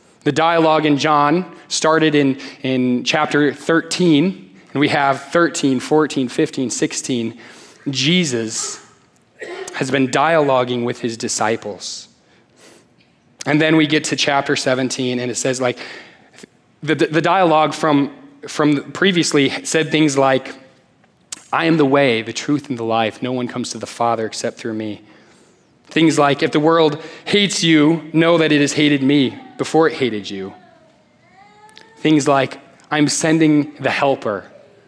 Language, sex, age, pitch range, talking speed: English, male, 20-39, 125-155 Hz, 145 wpm